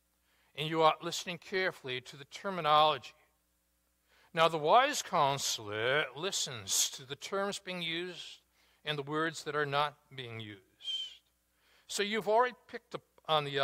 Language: English